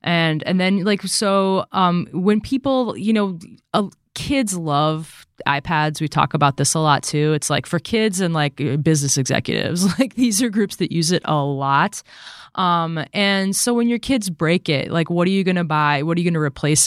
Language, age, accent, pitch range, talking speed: English, 20-39, American, 140-185 Hz, 210 wpm